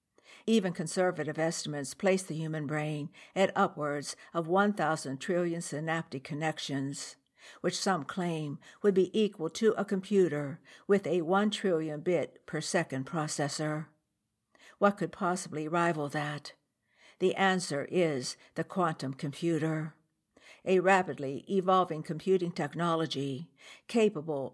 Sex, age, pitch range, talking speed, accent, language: female, 60-79, 150-180 Hz, 115 wpm, American, English